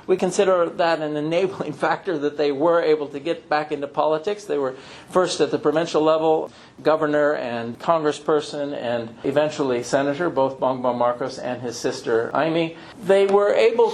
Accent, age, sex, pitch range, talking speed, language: American, 50-69, male, 145-180 Hz, 165 wpm, English